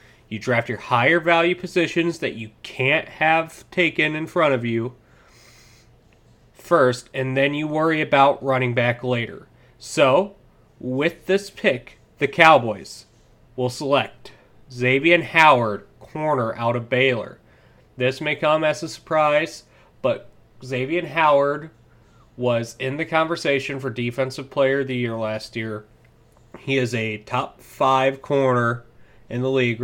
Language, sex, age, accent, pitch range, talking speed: English, male, 30-49, American, 120-140 Hz, 135 wpm